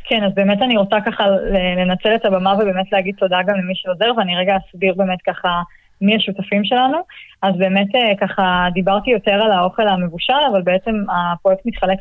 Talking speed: 175 wpm